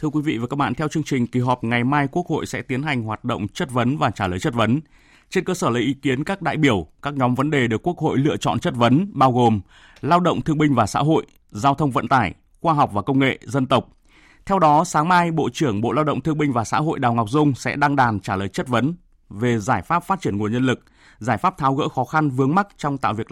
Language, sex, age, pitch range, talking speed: Vietnamese, male, 20-39, 120-150 Hz, 285 wpm